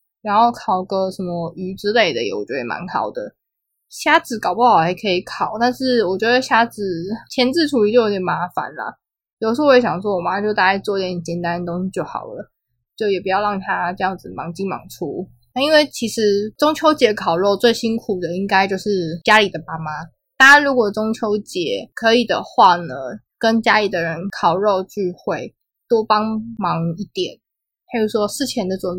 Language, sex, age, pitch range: Chinese, female, 20-39, 185-240 Hz